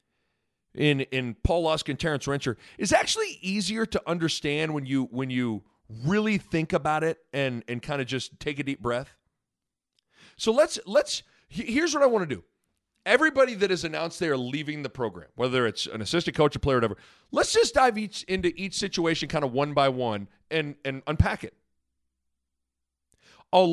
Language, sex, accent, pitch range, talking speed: English, male, American, 130-190 Hz, 180 wpm